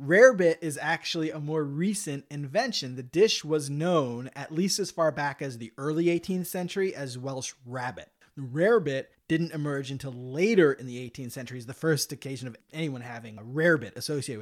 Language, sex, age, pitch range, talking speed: English, male, 30-49, 135-165 Hz, 180 wpm